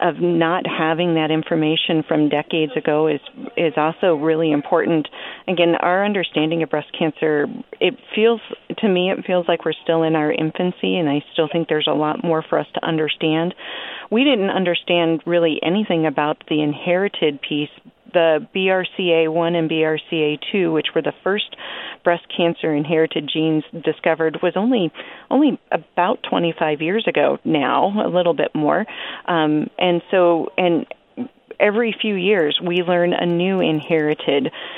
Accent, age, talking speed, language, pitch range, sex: American, 40-59, 155 wpm, English, 155-180 Hz, female